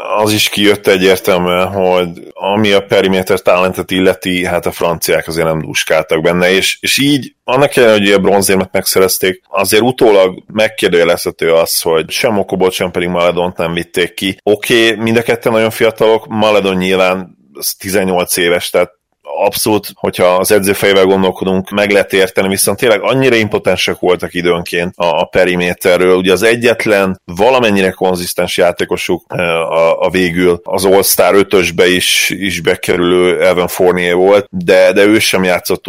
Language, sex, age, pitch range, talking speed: Hungarian, male, 30-49, 90-100 Hz, 150 wpm